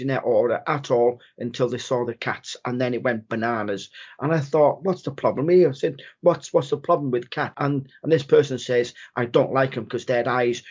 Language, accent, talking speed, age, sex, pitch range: English, British, 230 wpm, 40-59, male, 120-140 Hz